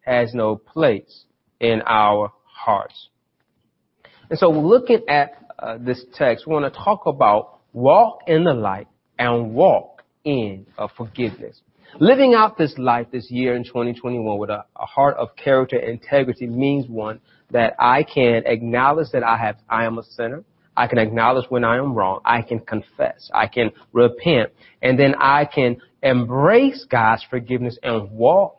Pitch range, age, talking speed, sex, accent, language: 115-145 Hz, 30-49, 160 wpm, male, American, English